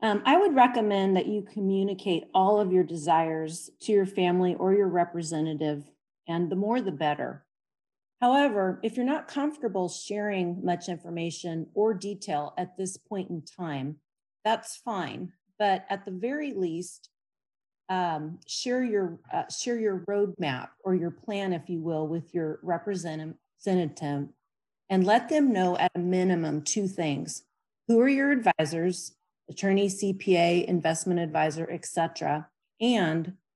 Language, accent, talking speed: English, American, 140 wpm